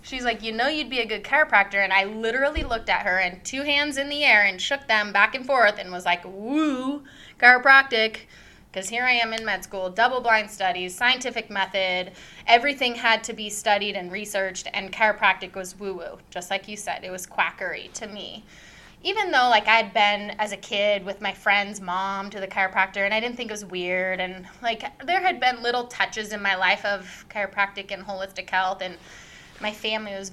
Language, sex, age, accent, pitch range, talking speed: English, female, 20-39, American, 190-240 Hz, 210 wpm